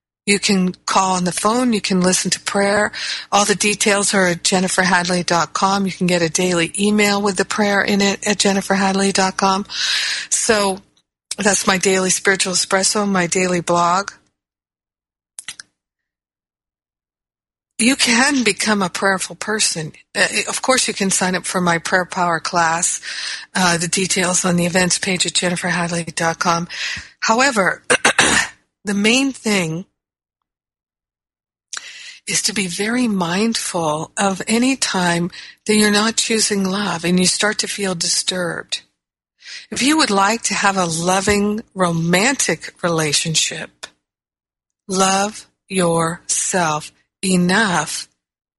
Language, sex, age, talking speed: English, female, 50-69, 125 wpm